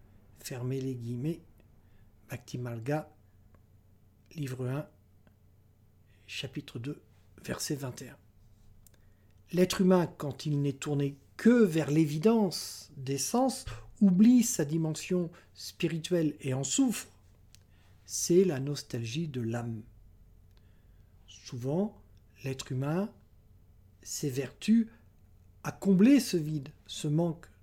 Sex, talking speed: male, 95 wpm